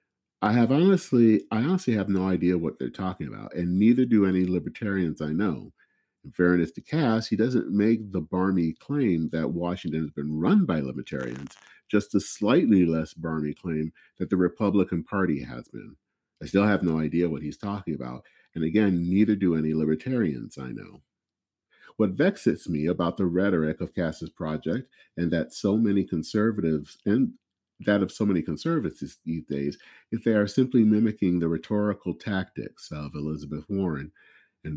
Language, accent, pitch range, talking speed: English, American, 80-100 Hz, 170 wpm